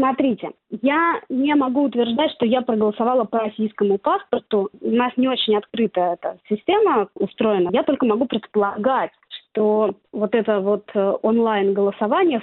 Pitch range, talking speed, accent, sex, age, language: 205-265 Hz, 135 wpm, native, female, 20-39, Russian